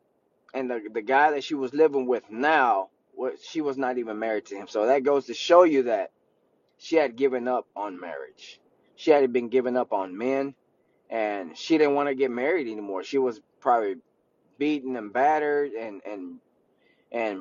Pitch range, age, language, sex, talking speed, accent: 125-150 Hz, 20-39, English, male, 185 wpm, American